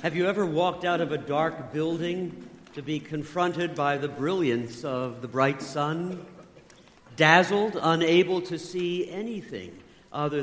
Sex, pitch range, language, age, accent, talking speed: male, 130-175 Hz, English, 50-69, American, 145 wpm